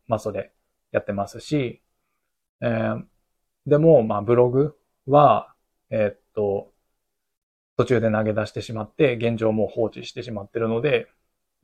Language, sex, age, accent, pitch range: Japanese, male, 20-39, native, 105-135 Hz